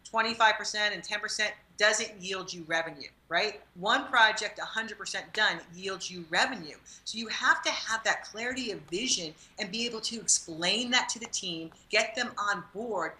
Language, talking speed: English, 170 wpm